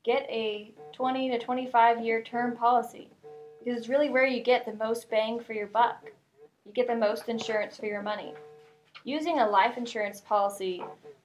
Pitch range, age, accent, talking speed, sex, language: 205-245 Hz, 10-29, American, 175 wpm, female, English